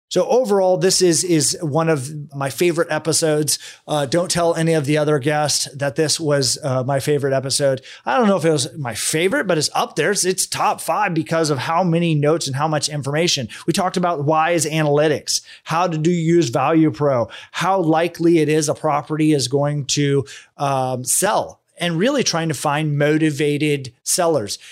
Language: English